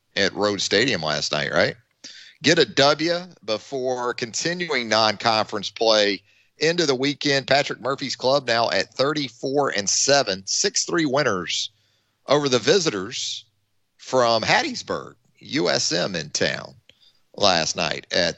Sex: male